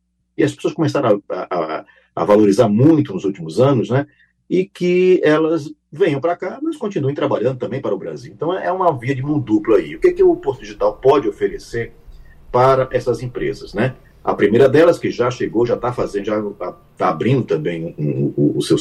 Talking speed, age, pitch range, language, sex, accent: 205 wpm, 50-69, 115-190 Hz, Portuguese, male, Brazilian